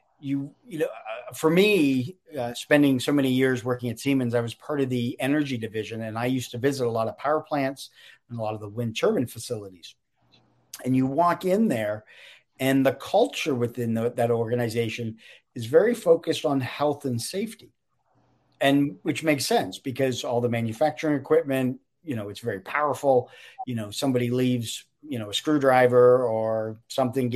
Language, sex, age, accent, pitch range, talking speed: English, male, 40-59, American, 115-140 Hz, 180 wpm